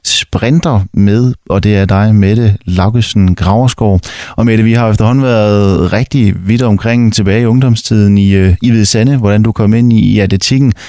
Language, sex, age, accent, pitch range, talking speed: Danish, male, 30-49, native, 100-125 Hz, 175 wpm